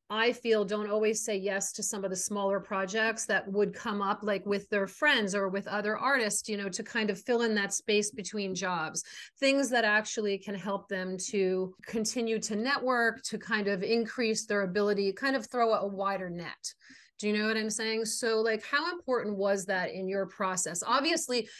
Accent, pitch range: American, 195-230 Hz